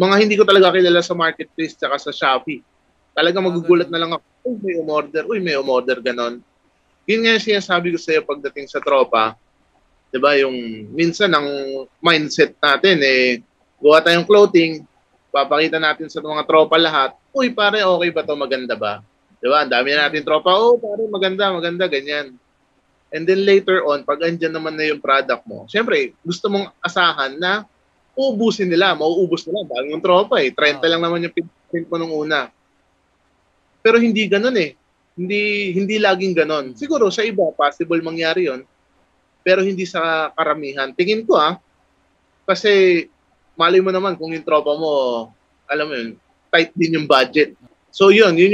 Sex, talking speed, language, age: male, 170 wpm, Filipino, 20-39